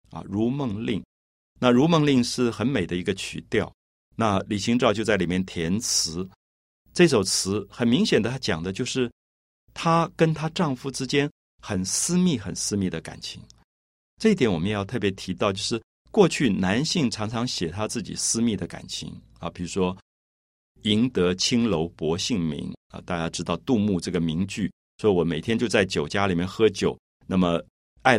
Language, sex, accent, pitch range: Chinese, male, native, 85-130 Hz